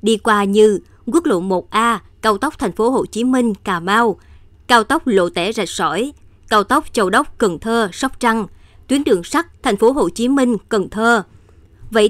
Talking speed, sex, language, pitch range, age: 205 wpm, male, Vietnamese, 200-255 Hz, 20-39